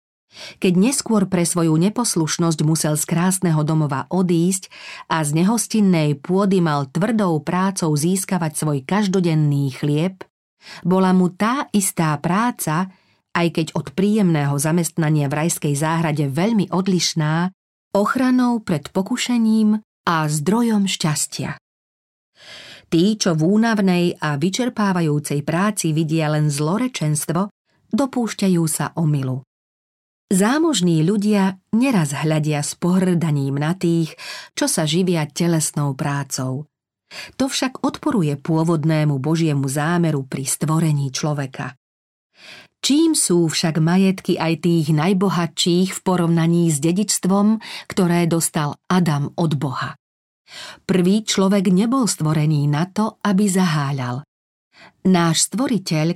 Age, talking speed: 40-59, 110 wpm